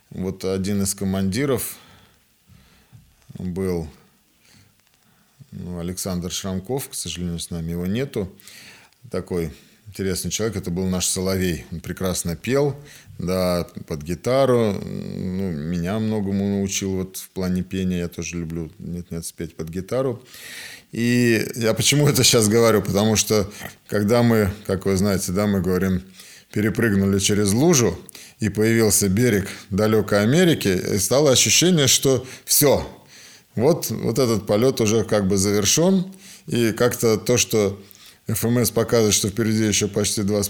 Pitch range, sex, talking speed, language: 95-125 Hz, male, 135 wpm, Russian